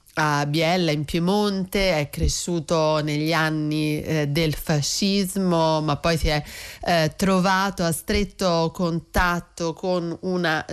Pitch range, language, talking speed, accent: 155-190 Hz, Italian, 125 wpm, native